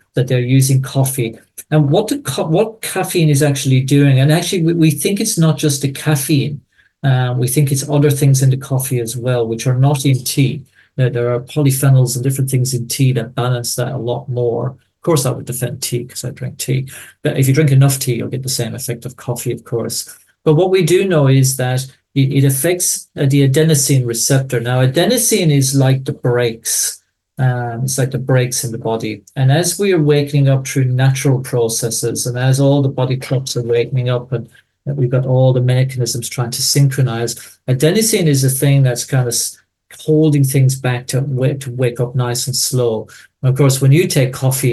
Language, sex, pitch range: English, male, 120-145 Hz